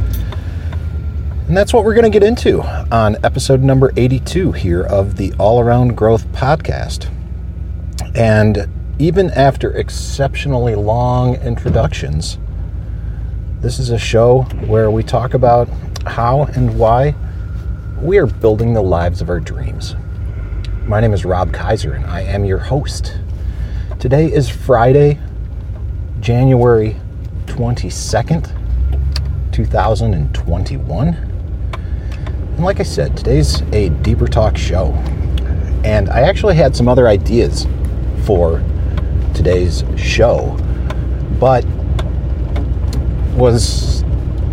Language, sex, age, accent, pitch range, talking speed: English, male, 40-59, American, 80-110 Hz, 110 wpm